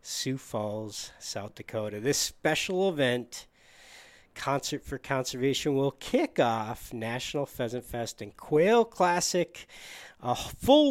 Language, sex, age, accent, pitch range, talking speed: English, male, 50-69, American, 115-155 Hz, 115 wpm